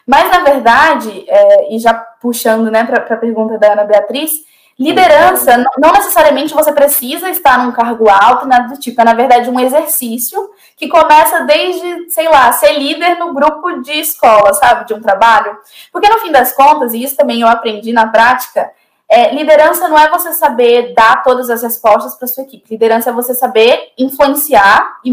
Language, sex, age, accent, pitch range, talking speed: Portuguese, female, 10-29, Brazilian, 230-295 Hz, 185 wpm